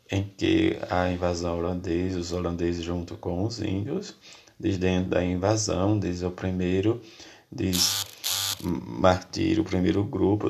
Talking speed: 130 wpm